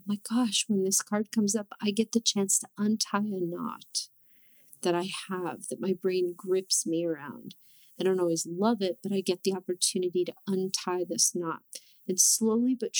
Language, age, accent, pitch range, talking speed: English, 40-59, American, 180-215 Hz, 190 wpm